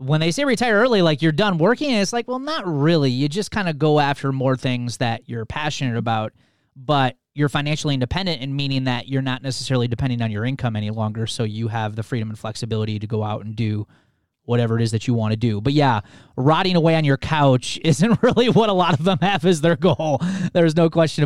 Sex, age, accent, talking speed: male, 30-49, American, 235 wpm